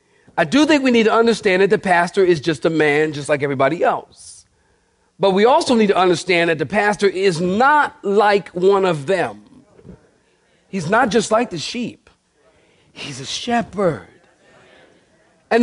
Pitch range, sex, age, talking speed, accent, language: 190-270 Hz, male, 40-59, 165 wpm, American, English